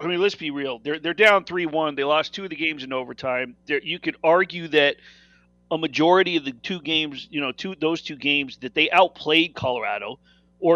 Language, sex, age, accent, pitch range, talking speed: English, male, 40-59, American, 130-180 Hz, 225 wpm